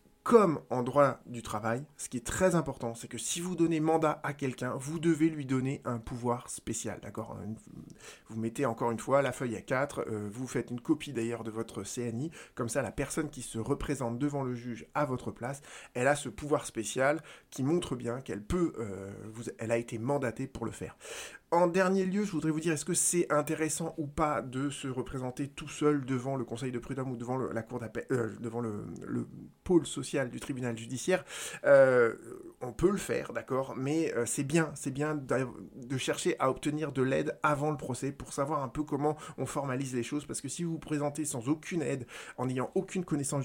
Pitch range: 120-150 Hz